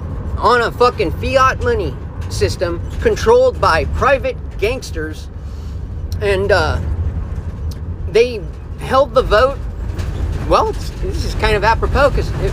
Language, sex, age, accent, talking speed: English, male, 40-59, American, 115 wpm